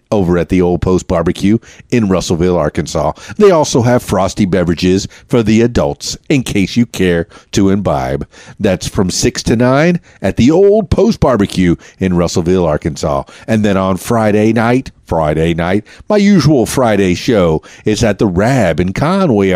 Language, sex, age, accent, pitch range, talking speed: English, male, 50-69, American, 90-120 Hz, 165 wpm